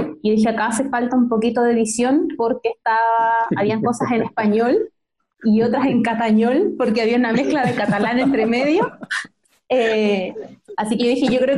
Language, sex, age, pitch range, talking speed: Spanish, female, 20-39, 205-250 Hz, 170 wpm